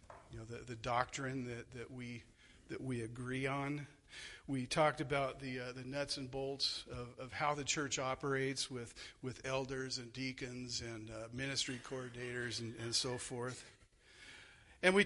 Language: English